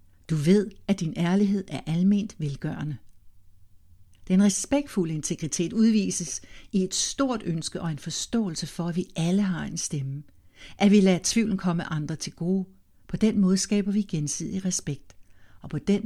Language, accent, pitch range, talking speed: Danish, native, 150-205 Hz, 165 wpm